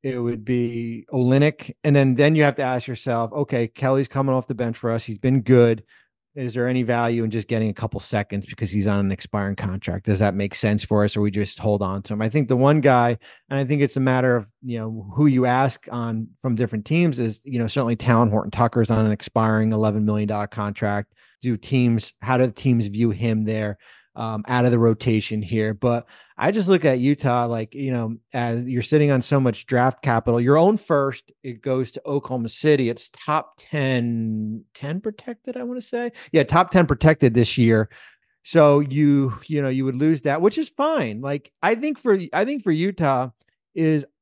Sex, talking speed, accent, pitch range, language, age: male, 220 wpm, American, 115-150 Hz, English, 30-49